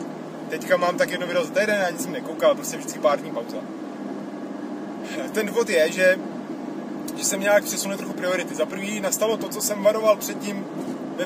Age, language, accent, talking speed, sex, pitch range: 30-49, Czech, native, 175 wpm, male, 200-290 Hz